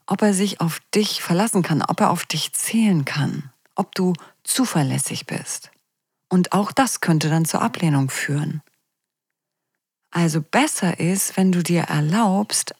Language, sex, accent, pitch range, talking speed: German, female, German, 160-190 Hz, 150 wpm